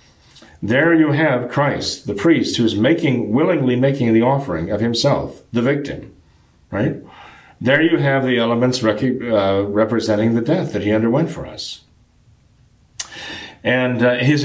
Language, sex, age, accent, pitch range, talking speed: English, male, 40-59, American, 110-135 Hz, 140 wpm